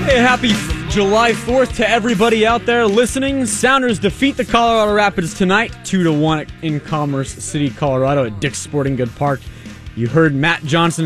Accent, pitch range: American, 140-200 Hz